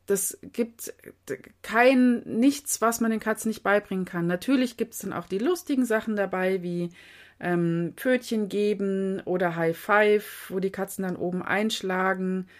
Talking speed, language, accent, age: 155 wpm, German, German, 30-49